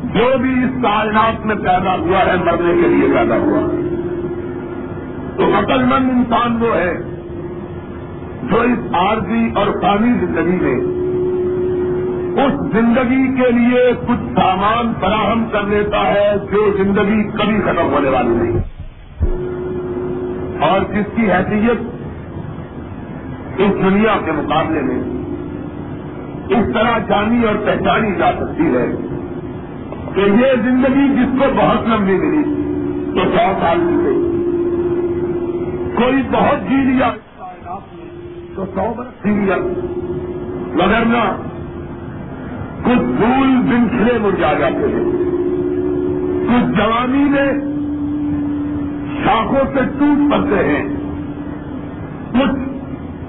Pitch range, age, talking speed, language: 200-285 Hz, 50-69, 110 wpm, Urdu